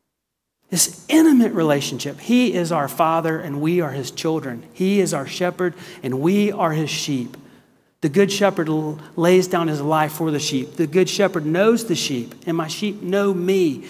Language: English